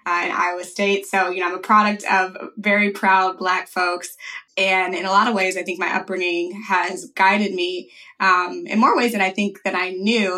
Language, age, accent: English, 20-39, American